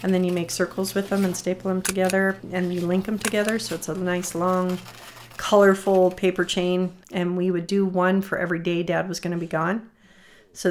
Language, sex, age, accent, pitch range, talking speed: English, female, 40-59, American, 170-190 Hz, 215 wpm